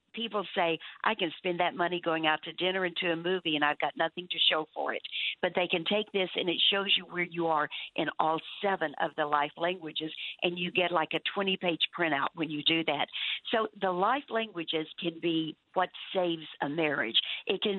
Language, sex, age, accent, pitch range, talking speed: English, female, 60-79, American, 160-205 Hz, 220 wpm